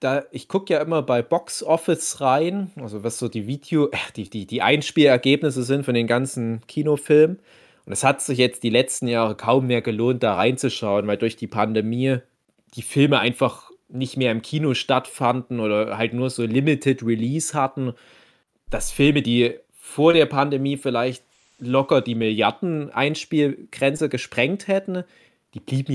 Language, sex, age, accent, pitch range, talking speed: German, male, 30-49, German, 115-135 Hz, 160 wpm